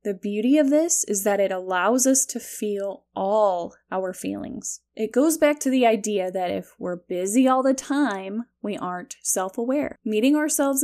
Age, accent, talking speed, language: 10-29, American, 175 wpm, English